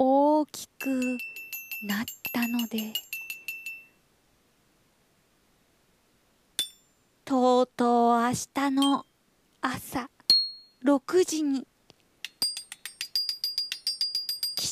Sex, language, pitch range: female, Japanese, 245-330 Hz